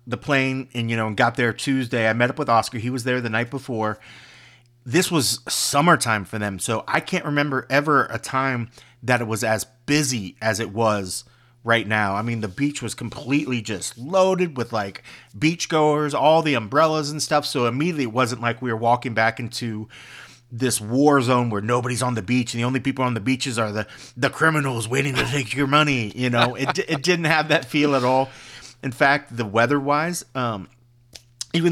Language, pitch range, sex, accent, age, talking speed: English, 115-140 Hz, male, American, 30-49, 205 wpm